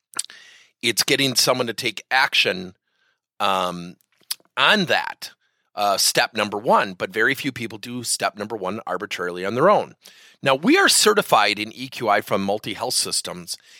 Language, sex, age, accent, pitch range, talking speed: English, male, 30-49, American, 105-140 Hz, 150 wpm